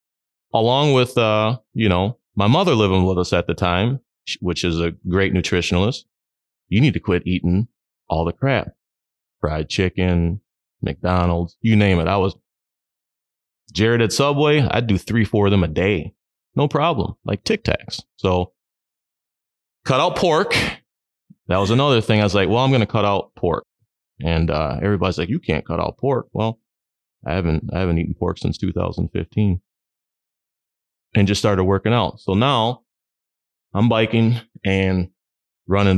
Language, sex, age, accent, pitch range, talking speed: English, male, 30-49, American, 90-135 Hz, 165 wpm